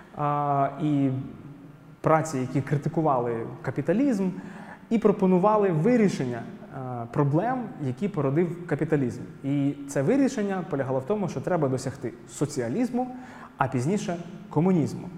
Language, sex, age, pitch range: Ukrainian, male, 20-39, 135-175 Hz